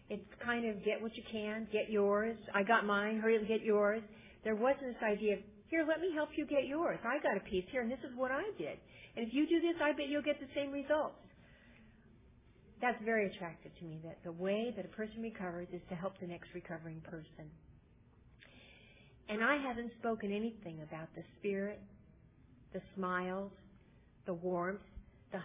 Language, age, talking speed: English, 50-69, 195 wpm